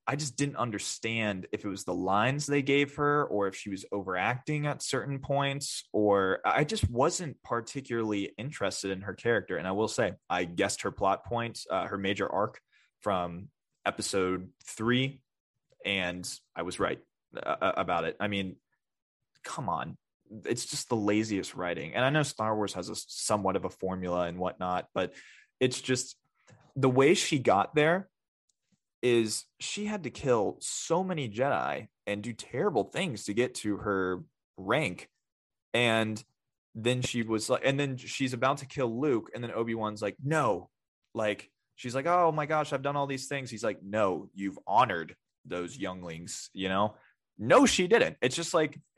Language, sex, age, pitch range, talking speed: English, male, 20-39, 100-140 Hz, 175 wpm